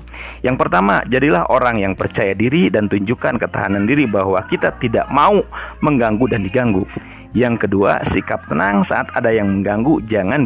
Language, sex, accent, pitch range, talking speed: Indonesian, male, native, 90-115 Hz, 155 wpm